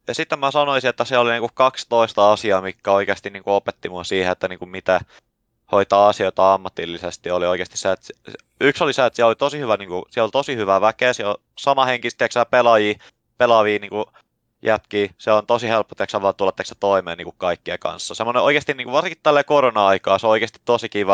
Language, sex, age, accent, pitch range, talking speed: Finnish, male, 20-39, native, 100-120 Hz, 215 wpm